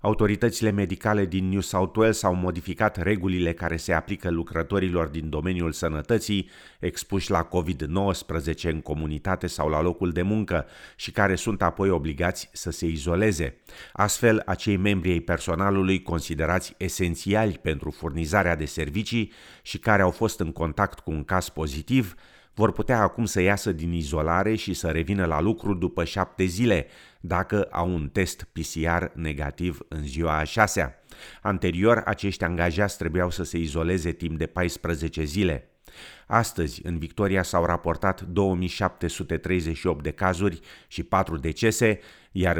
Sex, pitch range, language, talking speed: male, 80-100 Hz, Romanian, 145 wpm